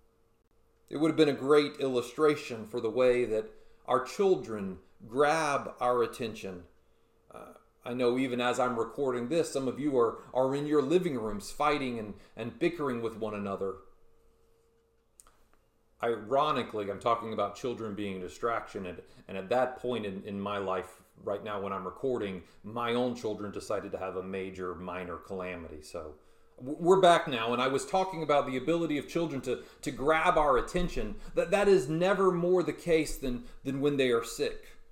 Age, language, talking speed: 40-59, English, 175 wpm